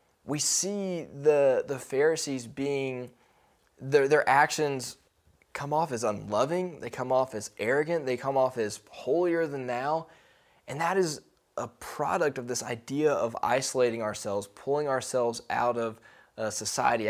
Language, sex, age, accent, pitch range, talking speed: English, male, 20-39, American, 115-145 Hz, 145 wpm